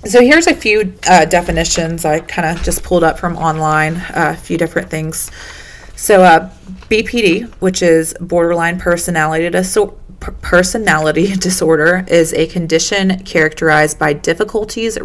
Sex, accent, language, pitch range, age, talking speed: female, American, English, 150-190 Hz, 30-49, 135 wpm